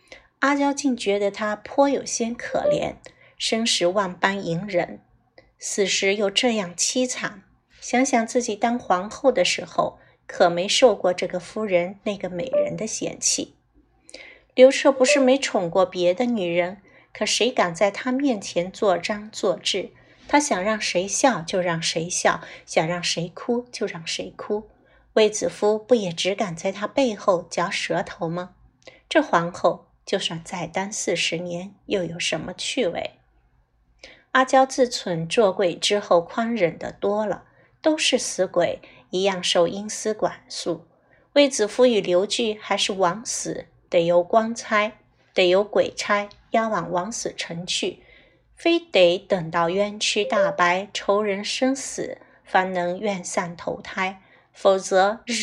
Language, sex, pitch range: Chinese, female, 180-235 Hz